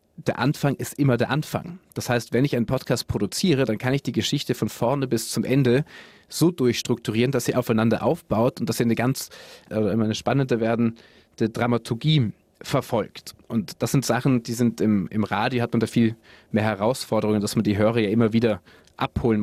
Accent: German